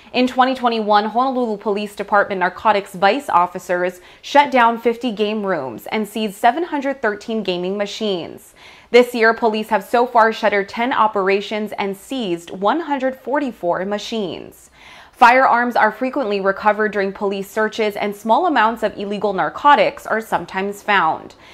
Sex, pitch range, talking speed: female, 200-240 Hz, 130 wpm